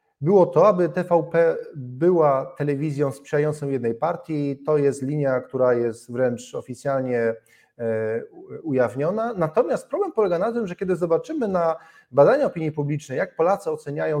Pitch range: 145-185 Hz